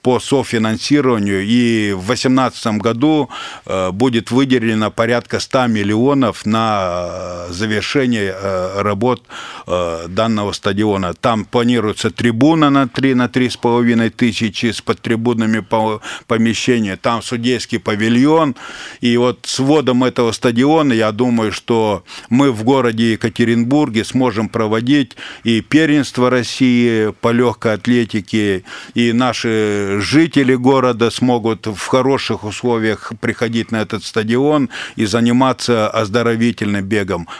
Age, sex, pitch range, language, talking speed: 50-69, male, 110-125 Hz, Russian, 110 wpm